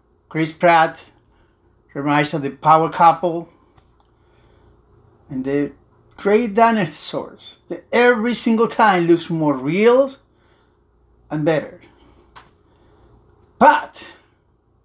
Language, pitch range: English, 145-205 Hz